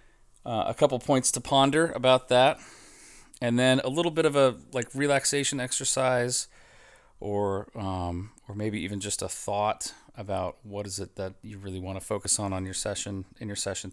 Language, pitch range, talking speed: English, 95-125 Hz, 185 wpm